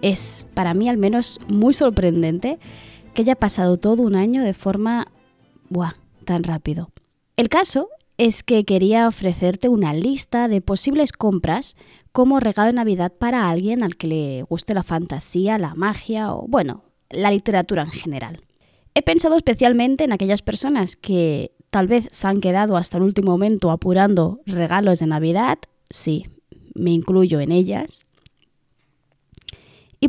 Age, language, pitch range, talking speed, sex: 20-39, Spanish, 180-250 Hz, 150 wpm, female